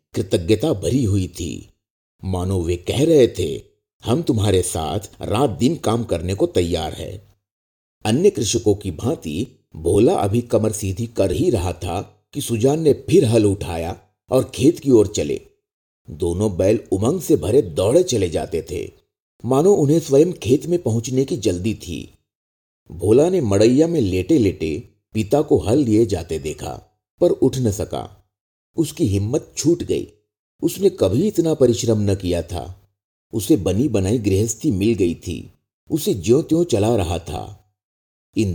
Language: Hindi